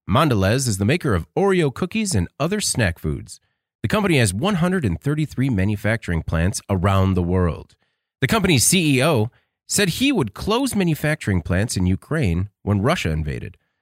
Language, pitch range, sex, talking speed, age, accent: English, 100-140 Hz, male, 150 wpm, 30-49, American